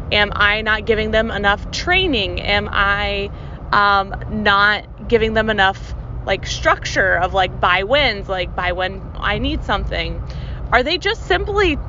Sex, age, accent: female, 20-39, American